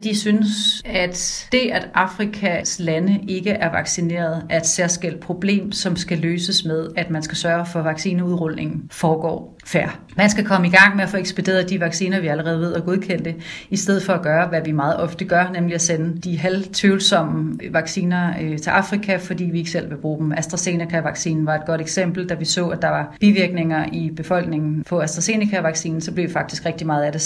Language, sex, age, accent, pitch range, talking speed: Danish, female, 30-49, native, 160-185 Hz, 200 wpm